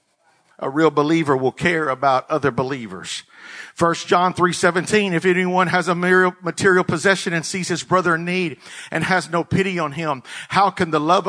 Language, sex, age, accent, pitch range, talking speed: English, male, 50-69, American, 170-200 Hz, 175 wpm